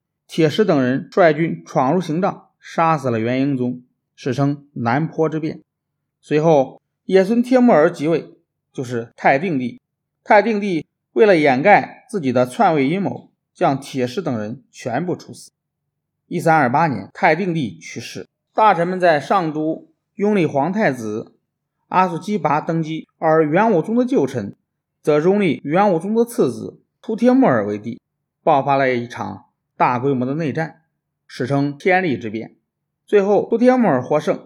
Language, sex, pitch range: Chinese, male, 135-180 Hz